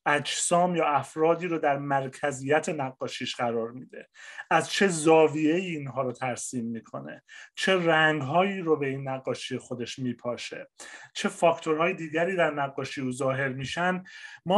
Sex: male